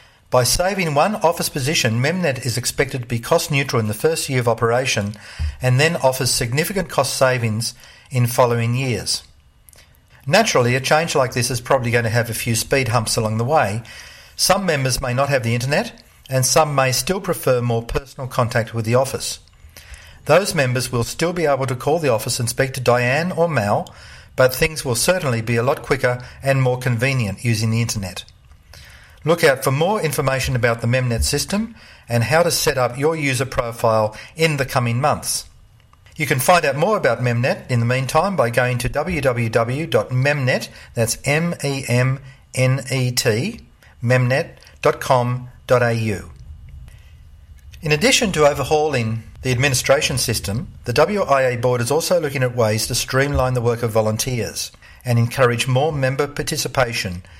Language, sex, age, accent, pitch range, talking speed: English, male, 50-69, Australian, 115-140 Hz, 165 wpm